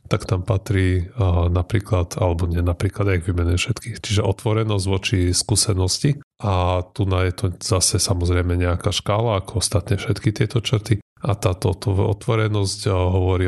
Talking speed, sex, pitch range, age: 155 wpm, male, 90-105 Hz, 30-49